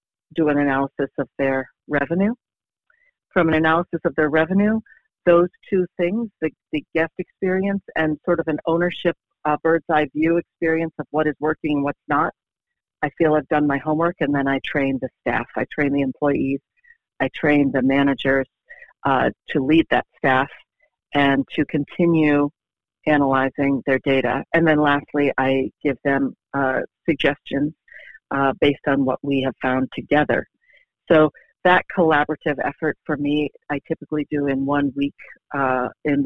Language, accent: English, American